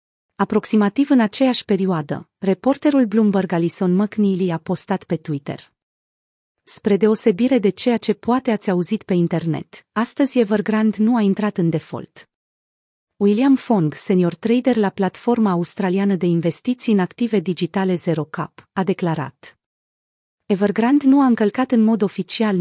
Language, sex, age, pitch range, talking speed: Romanian, female, 30-49, 175-220 Hz, 140 wpm